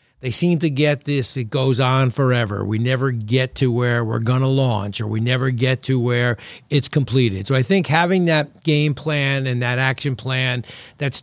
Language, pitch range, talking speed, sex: English, 125-150 Hz, 205 wpm, male